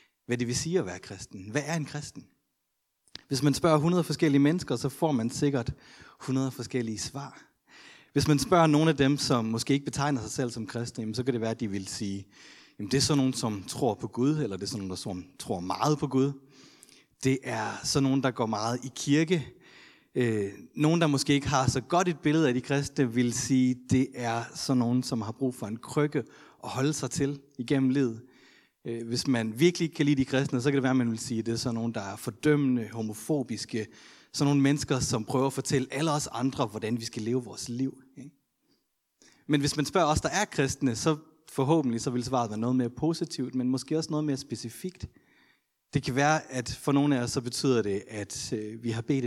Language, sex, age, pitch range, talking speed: Danish, male, 30-49, 115-145 Hz, 225 wpm